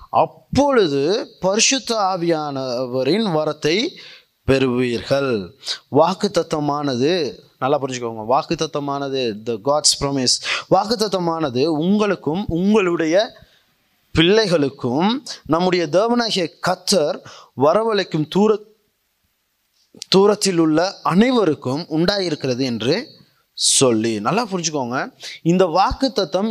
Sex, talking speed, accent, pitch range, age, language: male, 70 wpm, native, 145-195 Hz, 20-39, Tamil